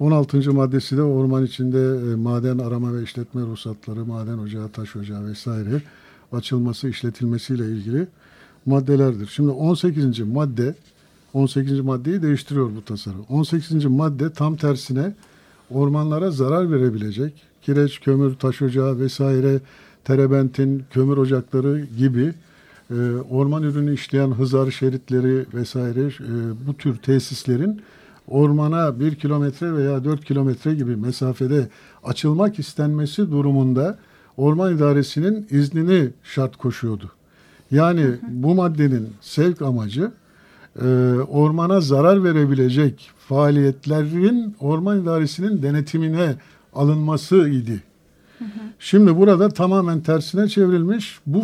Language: Turkish